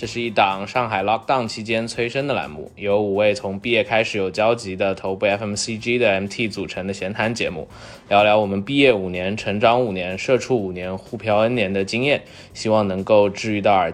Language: Chinese